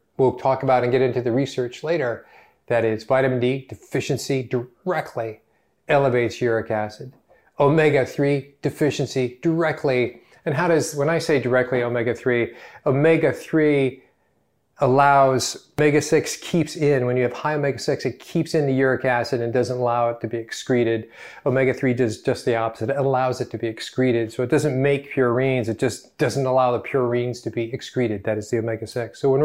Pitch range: 125-155 Hz